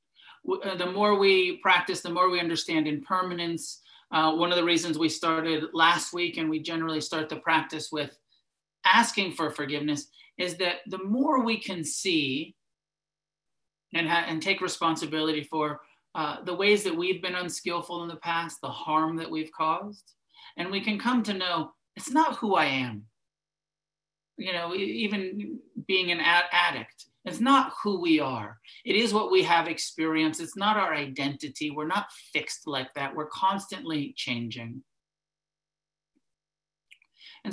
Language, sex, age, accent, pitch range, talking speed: English, male, 40-59, American, 155-190 Hz, 155 wpm